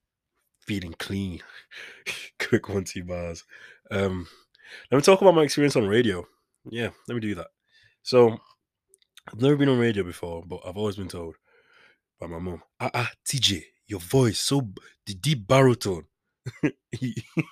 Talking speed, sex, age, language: 150 wpm, male, 20-39, English